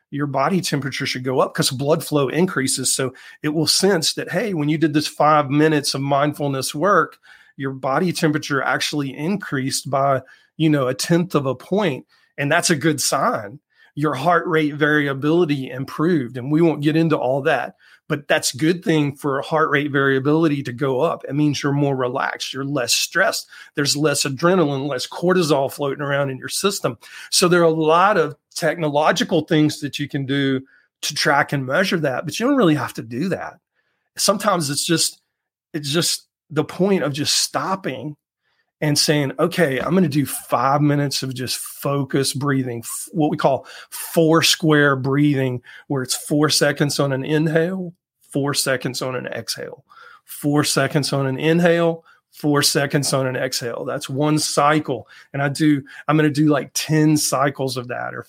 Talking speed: 185 wpm